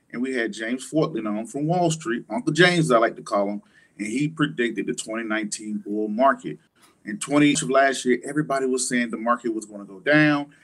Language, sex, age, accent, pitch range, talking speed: English, male, 30-49, American, 125-165 Hz, 210 wpm